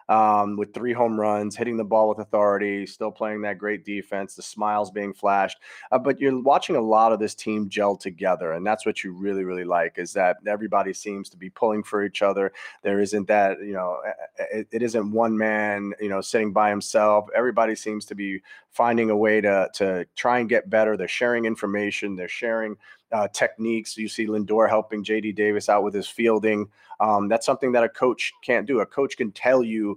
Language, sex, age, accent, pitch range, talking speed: English, male, 30-49, American, 100-115 Hz, 210 wpm